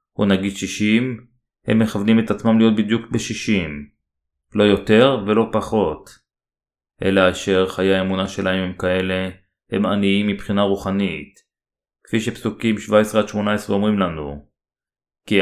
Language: Hebrew